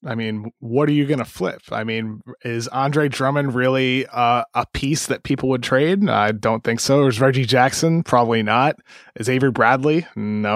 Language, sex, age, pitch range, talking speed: English, male, 20-39, 115-140 Hz, 190 wpm